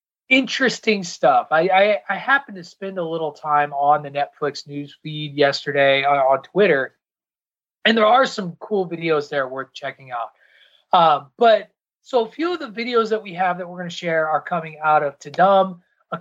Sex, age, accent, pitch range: male, 30-49, American, 160-220 Hz